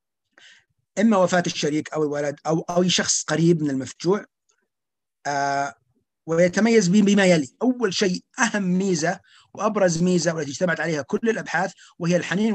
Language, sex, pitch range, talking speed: Arabic, male, 150-195 Hz, 135 wpm